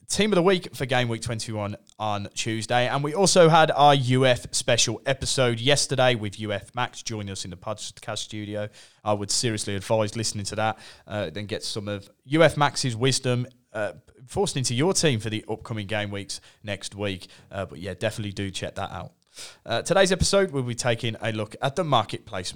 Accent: British